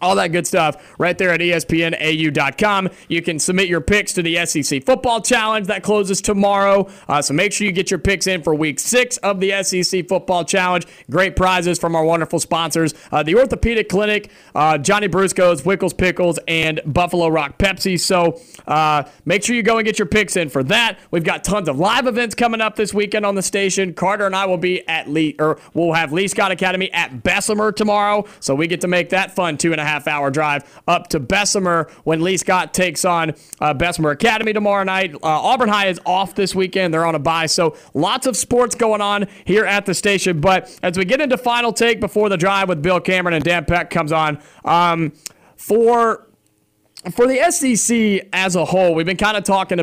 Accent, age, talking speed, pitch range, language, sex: American, 30-49, 215 wpm, 165-200 Hz, English, male